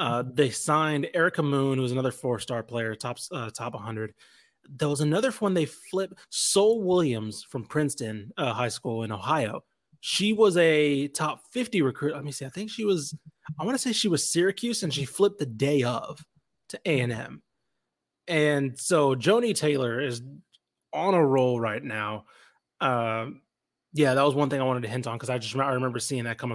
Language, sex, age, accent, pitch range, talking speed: English, male, 20-39, American, 115-145 Hz, 195 wpm